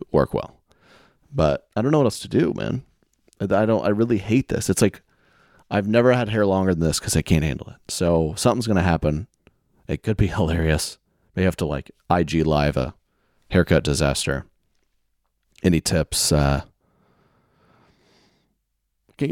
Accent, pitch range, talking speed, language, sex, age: American, 85-115 Hz, 160 wpm, English, male, 30-49